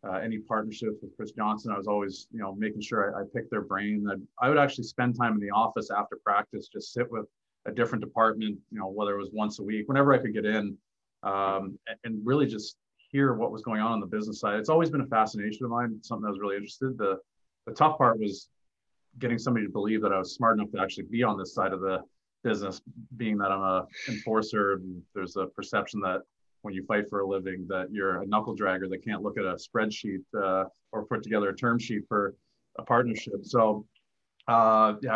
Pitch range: 100-115 Hz